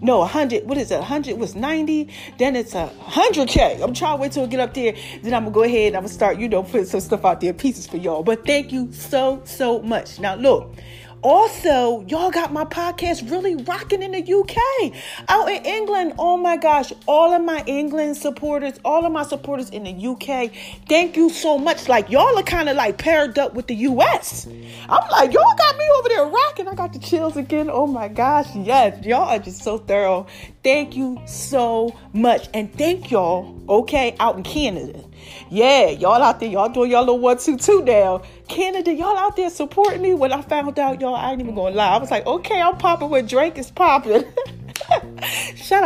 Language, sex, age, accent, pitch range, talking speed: English, female, 30-49, American, 235-345 Hz, 220 wpm